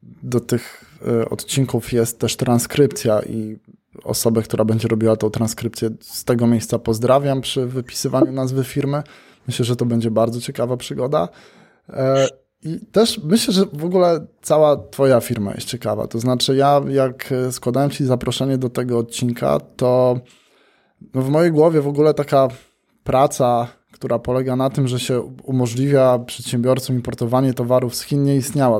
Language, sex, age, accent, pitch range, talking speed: Polish, male, 20-39, native, 120-135 Hz, 150 wpm